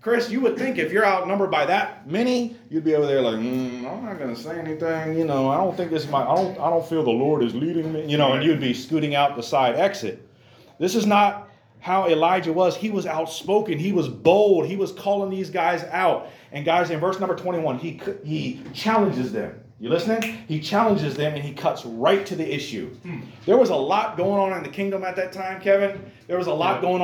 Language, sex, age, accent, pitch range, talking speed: English, male, 30-49, American, 145-195 Hz, 240 wpm